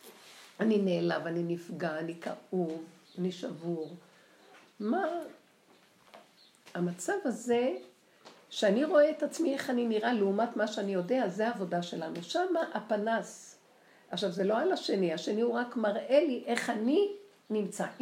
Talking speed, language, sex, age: 135 wpm, Hebrew, female, 60-79